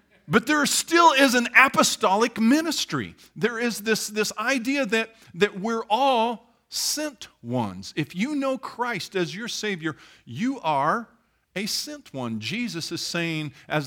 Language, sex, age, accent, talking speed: English, male, 50-69, American, 145 wpm